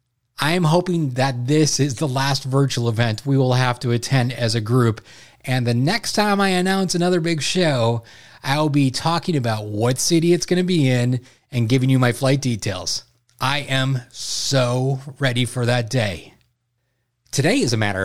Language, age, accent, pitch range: English, 30-49, American, 125-165 Hz